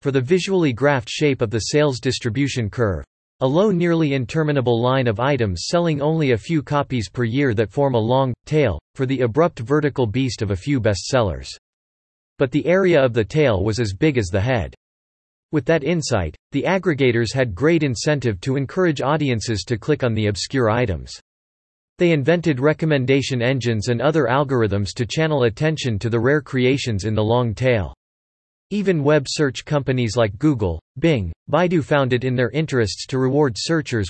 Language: English